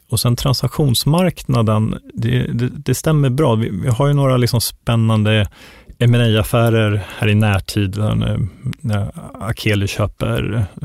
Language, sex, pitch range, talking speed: Swedish, male, 105-125 Hz, 120 wpm